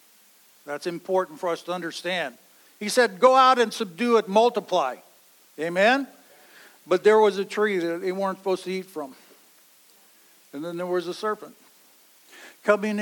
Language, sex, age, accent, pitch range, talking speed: English, male, 60-79, American, 180-240 Hz, 155 wpm